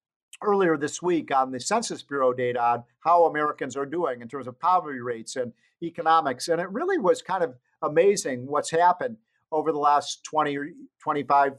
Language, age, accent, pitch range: English, 50-69, American, 140-185 Hz